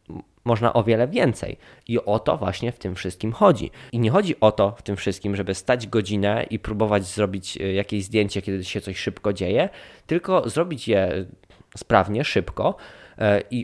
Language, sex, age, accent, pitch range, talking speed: Polish, male, 20-39, native, 100-130 Hz, 170 wpm